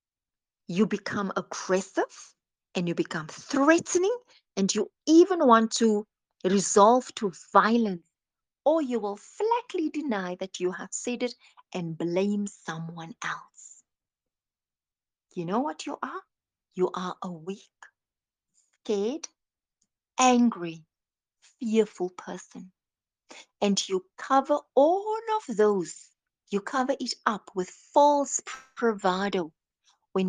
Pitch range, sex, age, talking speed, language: 190-265 Hz, female, 50-69, 110 wpm, English